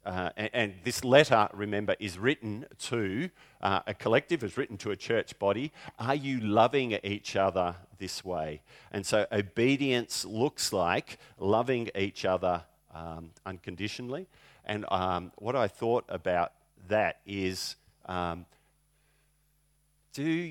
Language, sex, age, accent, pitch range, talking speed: English, male, 50-69, Australian, 90-135 Hz, 130 wpm